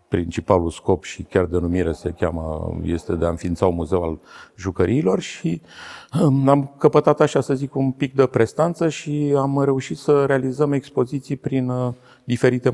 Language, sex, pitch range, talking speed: Romanian, male, 90-125 Hz, 160 wpm